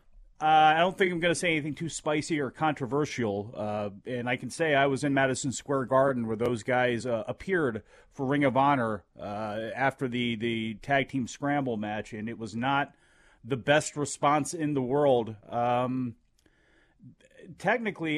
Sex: male